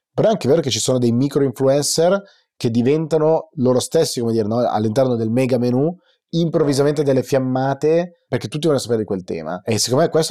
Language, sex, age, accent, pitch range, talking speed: Italian, male, 30-49, native, 105-135 Hz, 200 wpm